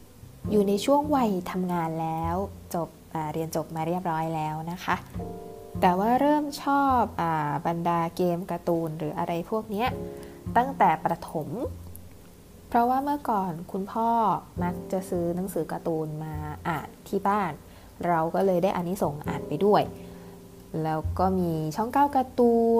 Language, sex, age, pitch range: Thai, female, 20-39, 160-205 Hz